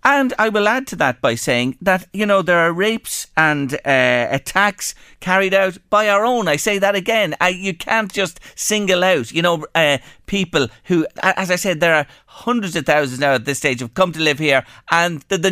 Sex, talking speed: male, 215 wpm